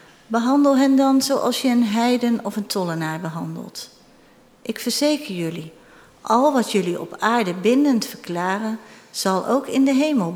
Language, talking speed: Dutch, 150 wpm